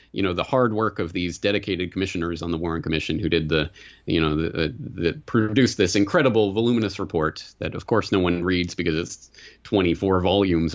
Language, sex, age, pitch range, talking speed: English, male, 30-49, 90-120 Hz, 200 wpm